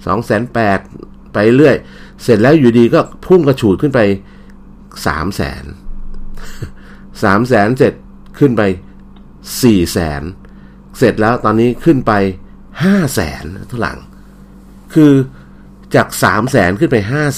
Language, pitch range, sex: Thai, 80-110 Hz, male